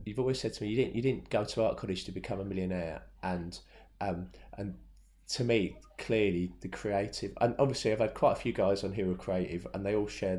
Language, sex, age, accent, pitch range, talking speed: English, male, 30-49, British, 90-115 Hz, 245 wpm